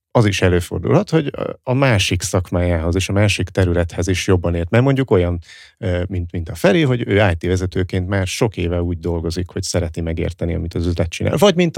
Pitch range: 85-105 Hz